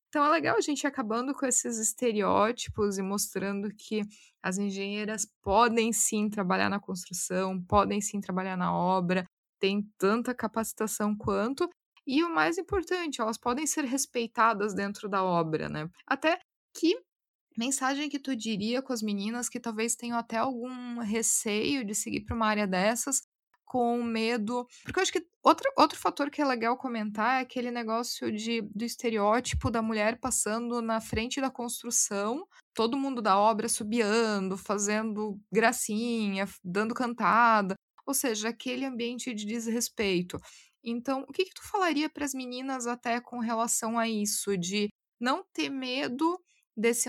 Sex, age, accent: female, 20-39, Brazilian